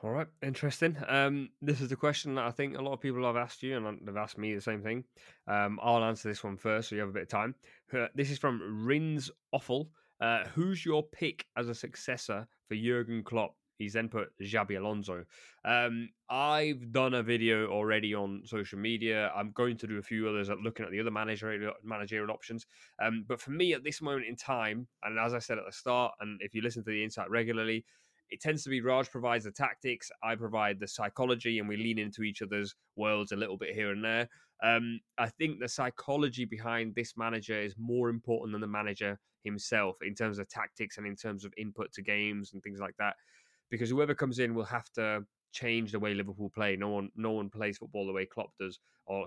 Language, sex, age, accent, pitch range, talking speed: English, male, 20-39, British, 105-125 Hz, 225 wpm